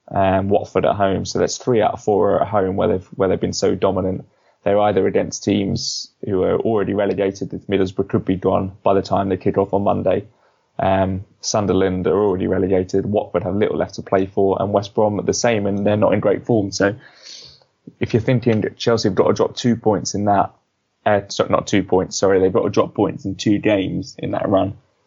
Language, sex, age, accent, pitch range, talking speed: English, male, 20-39, British, 100-110 Hz, 230 wpm